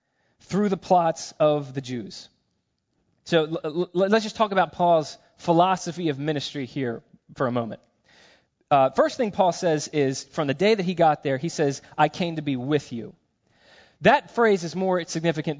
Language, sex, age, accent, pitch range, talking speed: English, male, 20-39, American, 140-175 Hz, 175 wpm